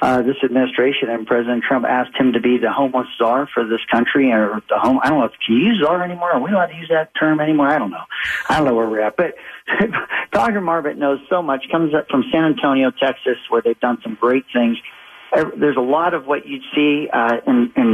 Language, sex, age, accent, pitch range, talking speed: English, male, 50-69, American, 120-145 Hz, 245 wpm